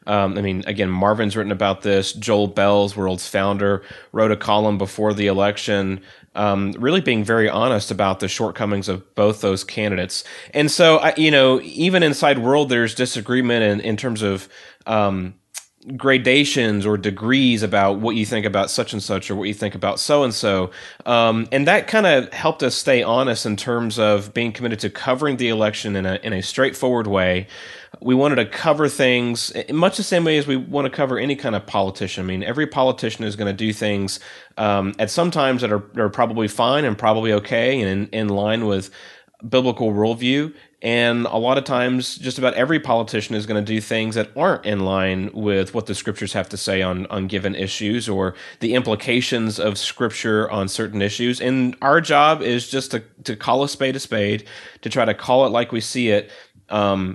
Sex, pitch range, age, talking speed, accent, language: male, 100-125 Hz, 30-49, 205 wpm, American, English